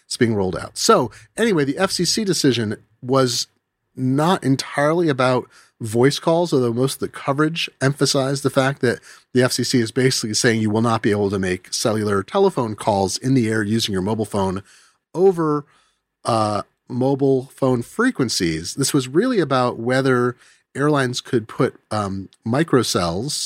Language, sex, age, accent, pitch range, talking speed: English, male, 30-49, American, 110-140 Hz, 155 wpm